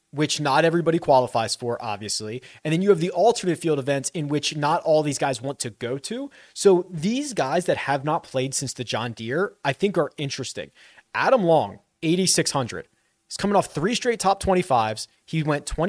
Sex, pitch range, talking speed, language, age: male, 135-185 Hz, 195 wpm, English, 30-49